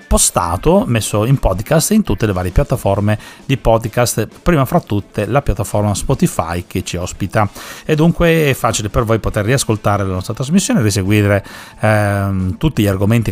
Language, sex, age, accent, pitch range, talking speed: Italian, male, 40-59, native, 95-115 Hz, 160 wpm